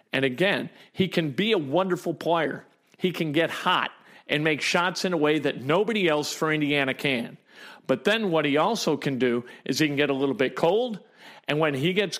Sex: male